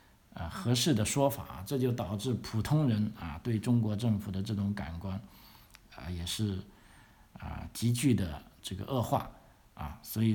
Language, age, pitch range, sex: Chinese, 50-69, 95-115 Hz, male